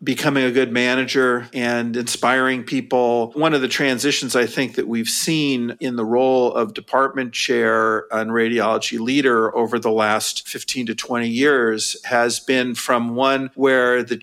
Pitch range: 120-140 Hz